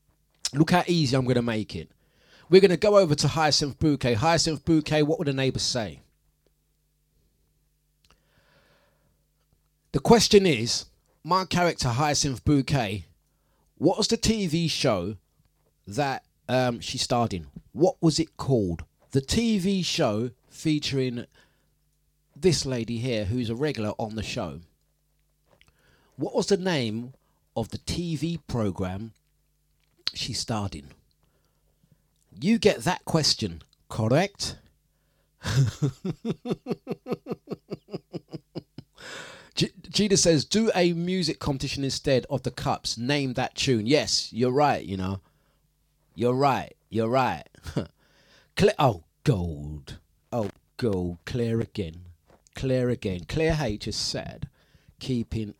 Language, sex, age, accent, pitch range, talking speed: English, male, 30-49, British, 105-160 Hz, 115 wpm